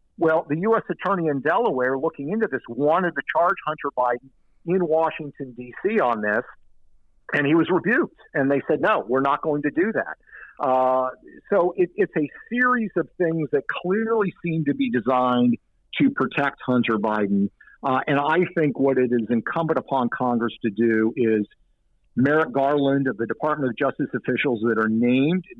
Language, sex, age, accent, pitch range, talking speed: English, male, 50-69, American, 125-170 Hz, 175 wpm